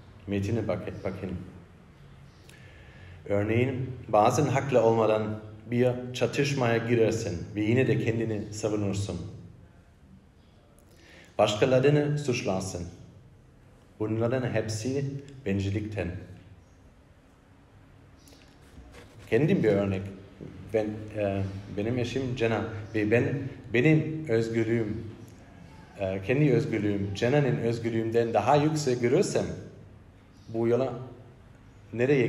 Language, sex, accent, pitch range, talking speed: Turkish, male, German, 95-115 Hz, 80 wpm